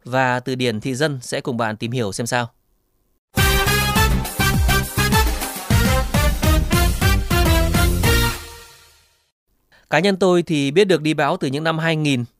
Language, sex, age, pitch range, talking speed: Vietnamese, male, 20-39, 125-160 Hz, 115 wpm